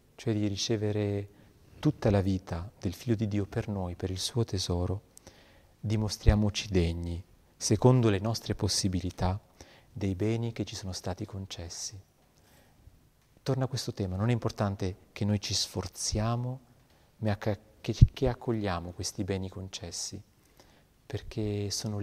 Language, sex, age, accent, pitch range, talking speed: Italian, male, 40-59, native, 95-110 Hz, 130 wpm